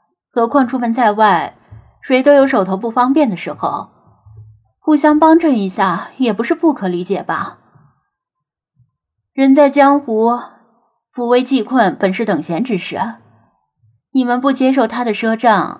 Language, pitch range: Chinese, 190-260 Hz